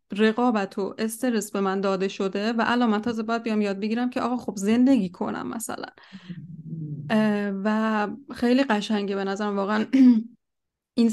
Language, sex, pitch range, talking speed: Persian, female, 205-245 Hz, 145 wpm